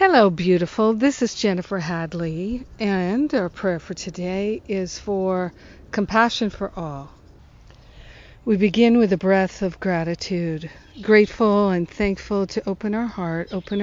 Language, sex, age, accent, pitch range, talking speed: English, female, 50-69, American, 175-210 Hz, 135 wpm